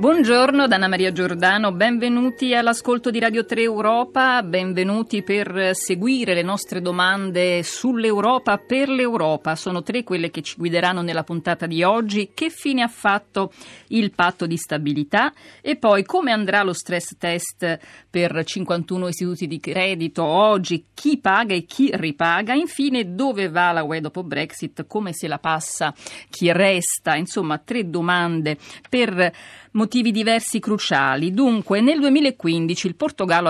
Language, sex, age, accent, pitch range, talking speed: Italian, female, 50-69, native, 165-225 Hz, 145 wpm